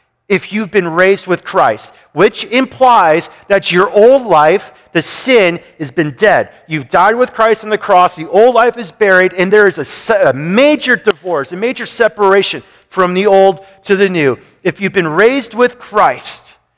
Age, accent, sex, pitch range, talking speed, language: 40-59, American, male, 170-225 Hz, 185 wpm, English